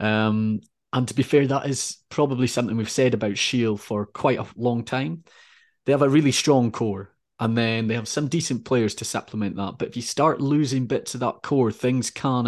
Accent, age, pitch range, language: British, 30-49, 110-135 Hz, English